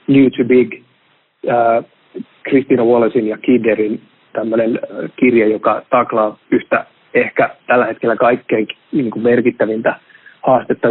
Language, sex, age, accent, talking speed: Finnish, male, 30-49, native, 115 wpm